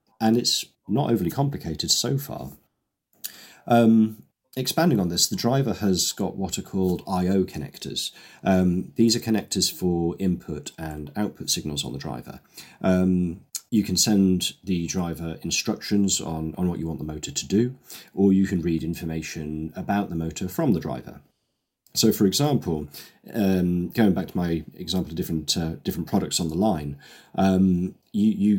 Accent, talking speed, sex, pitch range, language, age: British, 165 wpm, male, 80-100 Hz, English, 40-59